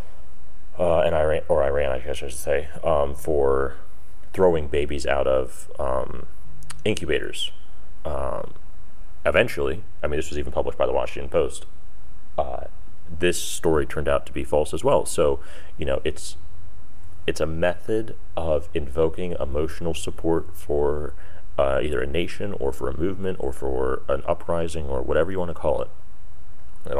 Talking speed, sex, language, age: 155 wpm, male, English, 30-49